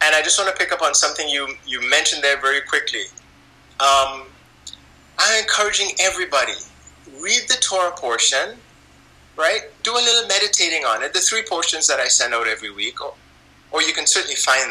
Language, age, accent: English, 30-49, American